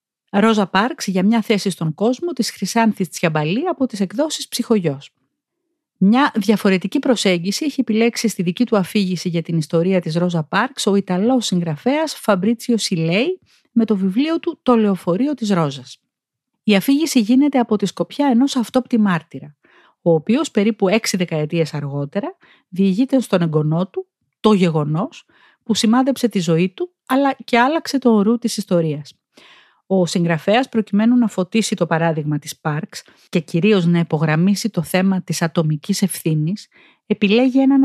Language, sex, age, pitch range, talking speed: Greek, female, 40-59, 170-240 Hz, 150 wpm